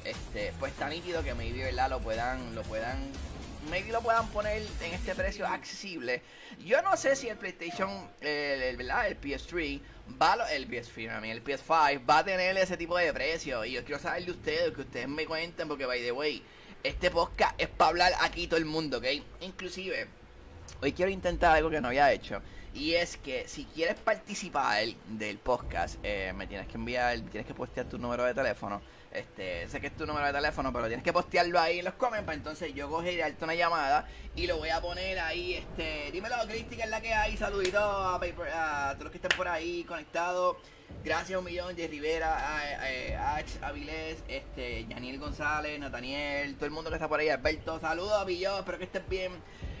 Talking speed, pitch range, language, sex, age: 210 wpm, 130-180 Hz, Spanish, male, 20-39